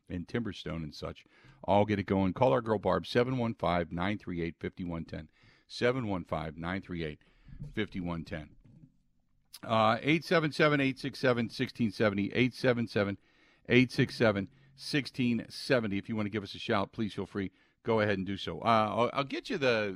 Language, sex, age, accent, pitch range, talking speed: English, male, 50-69, American, 95-125 Hz, 115 wpm